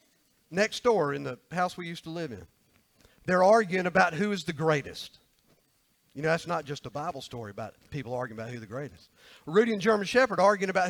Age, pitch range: 50-69, 150-200 Hz